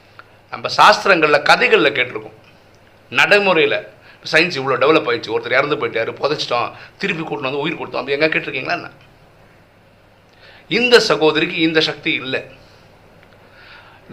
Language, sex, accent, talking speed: Tamil, male, native, 110 wpm